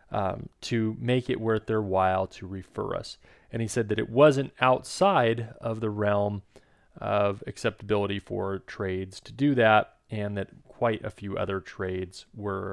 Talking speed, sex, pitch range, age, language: 165 wpm, male, 100-125 Hz, 30-49, English